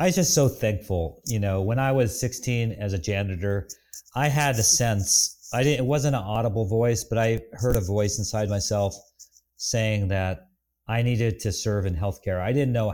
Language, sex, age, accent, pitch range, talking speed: English, male, 40-59, American, 100-120 Hz, 200 wpm